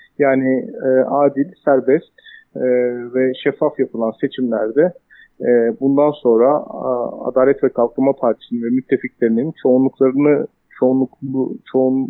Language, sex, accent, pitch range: German, male, Turkish, 130-165 Hz